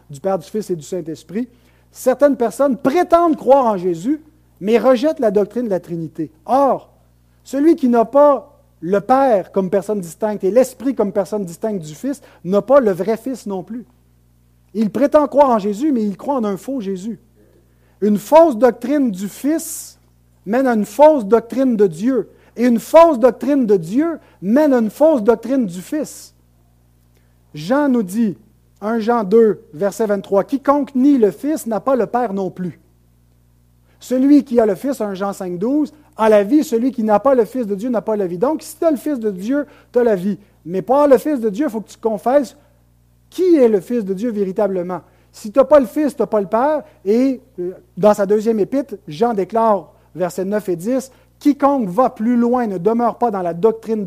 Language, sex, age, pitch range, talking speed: French, male, 50-69, 185-260 Hz, 210 wpm